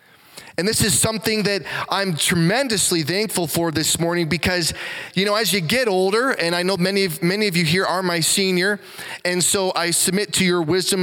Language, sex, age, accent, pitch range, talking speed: English, male, 20-39, American, 160-200 Hz, 195 wpm